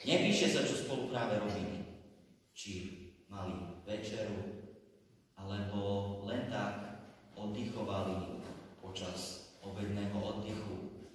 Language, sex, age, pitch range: Slovak, male, 30-49, 95-110 Hz